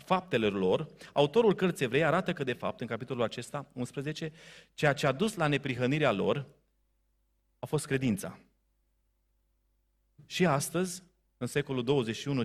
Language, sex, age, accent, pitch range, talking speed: Romanian, male, 30-49, native, 125-180 Hz, 135 wpm